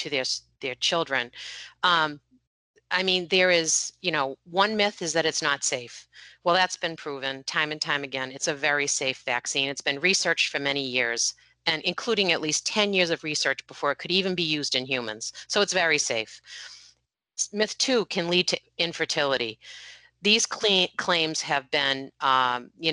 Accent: American